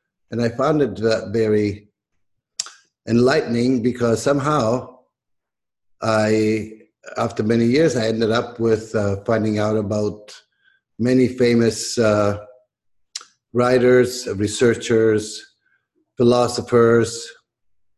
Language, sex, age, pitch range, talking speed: English, male, 50-69, 105-125 Hz, 85 wpm